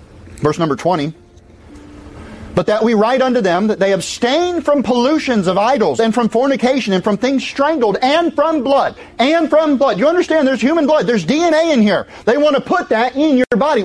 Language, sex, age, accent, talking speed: English, male, 30-49, American, 200 wpm